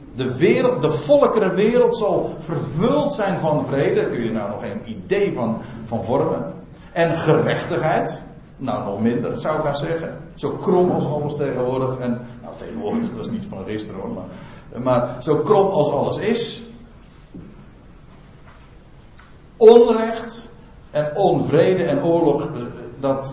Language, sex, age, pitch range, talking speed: Dutch, male, 60-79, 135-220 Hz, 135 wpm